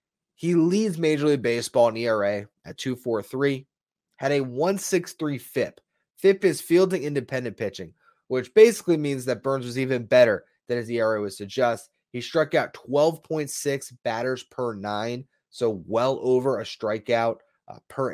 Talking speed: 150 wpm